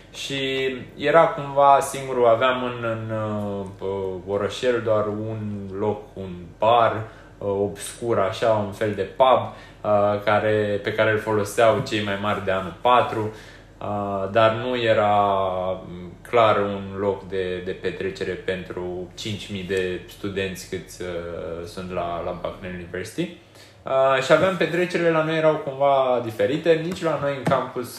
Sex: male